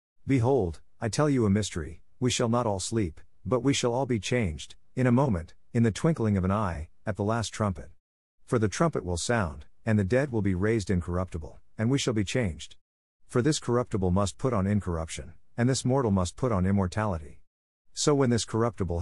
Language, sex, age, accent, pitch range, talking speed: English, male, 50-69, American, 90-120 Hz, 205 wpm